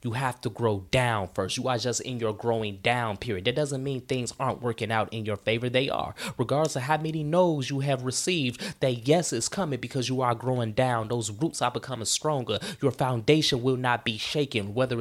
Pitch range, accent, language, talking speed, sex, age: 115-145 Hz, American, English, 220 wpm, male, 20-39